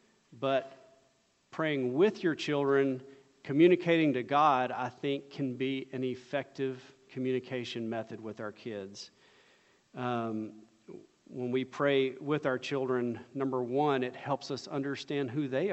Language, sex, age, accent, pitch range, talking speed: English, male, 40-59, American, 125-150 Hz, 130 wpm